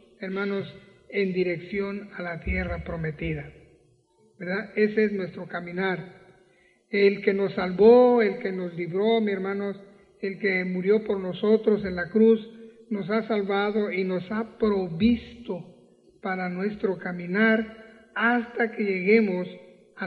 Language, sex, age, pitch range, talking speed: Spanish, male, 40-59, 185-215 Hz, 130 wpm